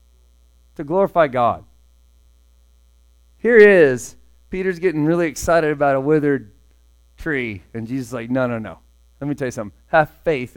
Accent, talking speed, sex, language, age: American, 160 wpm, male, English, 40-59